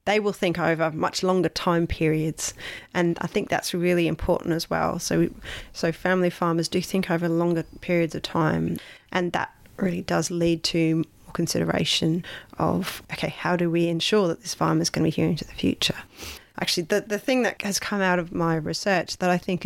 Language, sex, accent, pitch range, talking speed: English, female, Australian, 160-190 Hz, 205 wpm